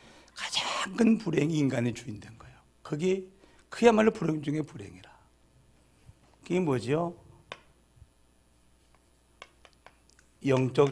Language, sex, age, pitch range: Korean, male, 60-79, 110-170 Hz